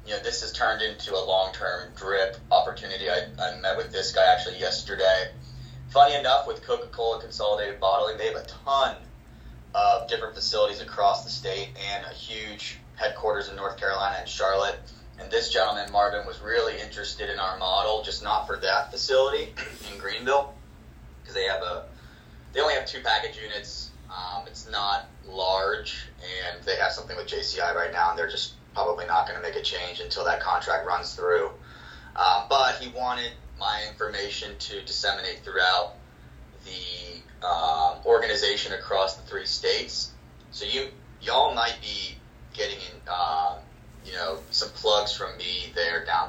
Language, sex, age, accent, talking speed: English, male, 30-49, American, 165 wpm